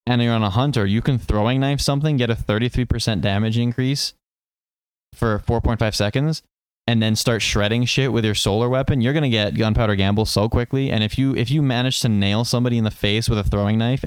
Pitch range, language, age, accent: 100-120 Hz, English, 20-39, American